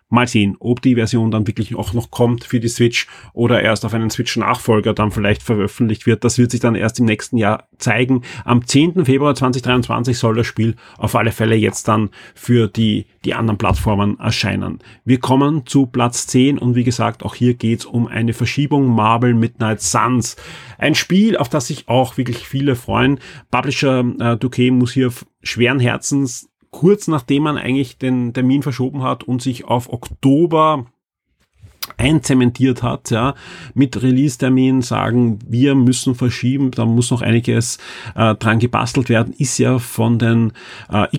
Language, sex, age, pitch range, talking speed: German, male, 30-49, 115-130 Hz, 170 wpm